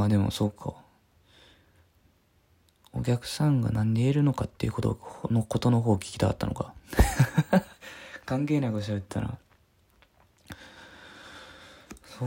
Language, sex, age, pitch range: Japanese, male, 20-39, 100-125 Hz